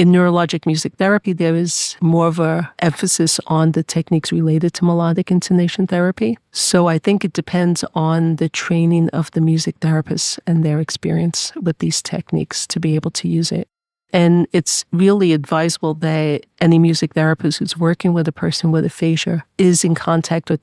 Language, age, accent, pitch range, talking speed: English, 50-69, American, 160-175 Hz, 175 wpm